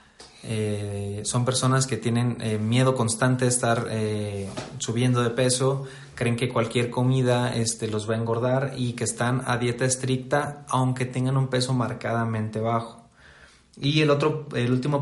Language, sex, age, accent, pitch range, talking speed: Spanish, male, 30-49, Mexican, 115-130 Hz, 160 wpm